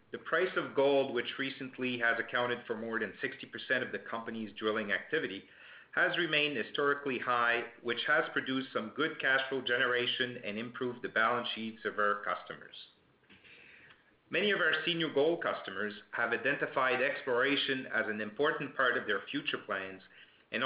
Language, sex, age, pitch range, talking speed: English, male, 50-69, 120-145 Hz, 160 wpm